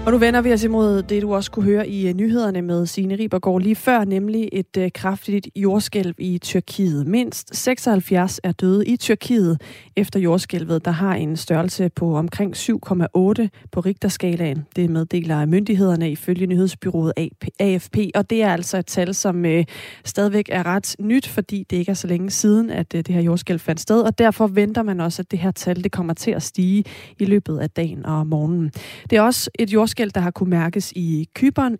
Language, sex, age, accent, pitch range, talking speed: Danish, female, 30-49, native, 175-210 Hz, 190 wpm